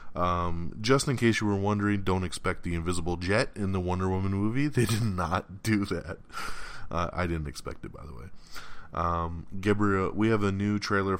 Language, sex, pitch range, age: English, male, 80-100 Hz, 20-39